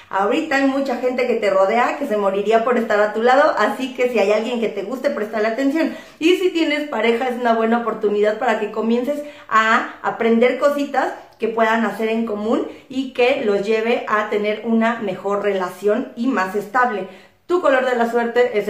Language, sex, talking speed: Spanish, female, 200 wpm